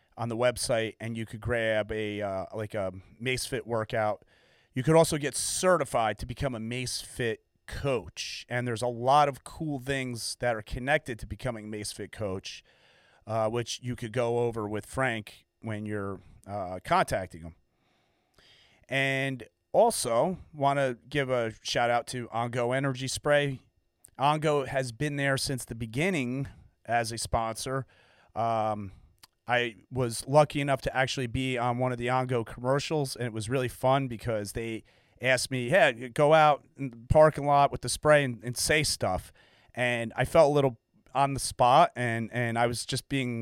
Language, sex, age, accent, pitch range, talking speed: English, male, 30-49, American, 115-140 Hz, 170 wpm